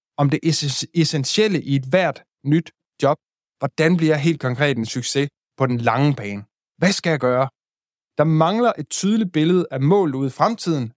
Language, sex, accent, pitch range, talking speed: Danish, male, native, 130-175 Hz, 180 wpm